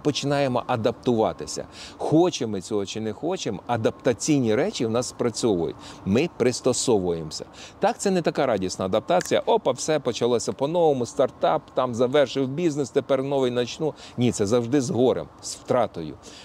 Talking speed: 140 wpm